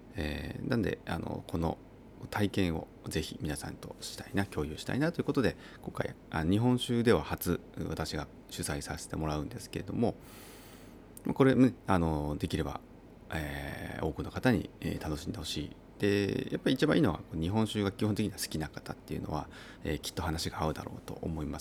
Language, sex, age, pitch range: Japanese, male, 30-49, 80-115 Hz